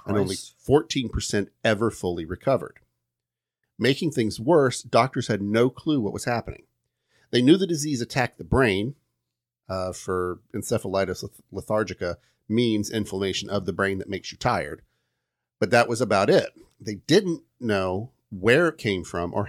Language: English